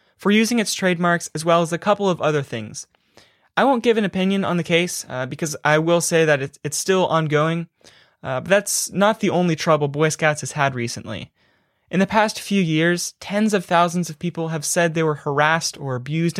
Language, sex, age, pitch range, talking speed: English, male, 20-39, 150-185 Hz, 215 wpm